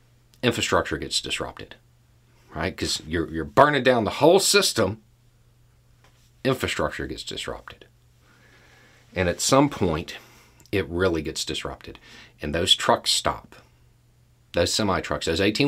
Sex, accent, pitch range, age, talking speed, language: male, American, 90-120 Hz, 40-59, 115 wpm, English